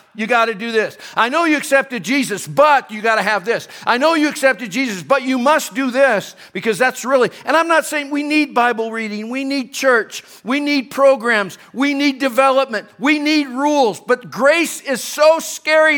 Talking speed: 205 wpm